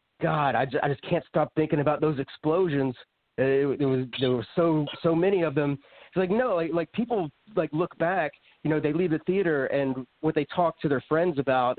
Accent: American